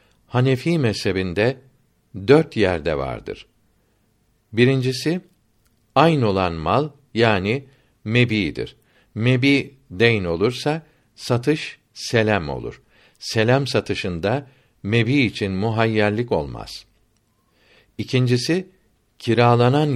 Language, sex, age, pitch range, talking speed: Turkish, male, 60-79, 100-130 Hz, 75 wpm